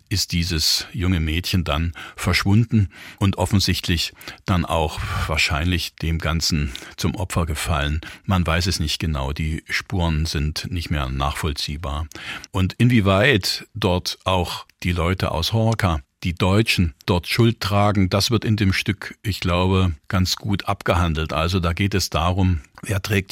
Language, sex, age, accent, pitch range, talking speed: German, male, 50-69, German, 80-95 Hz, 145 wpm